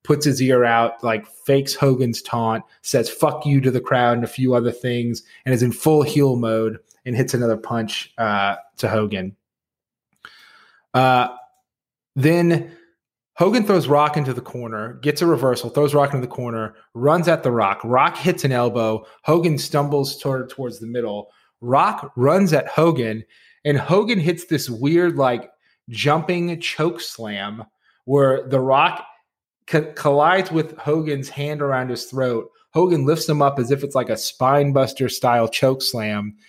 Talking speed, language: 160 wpm, English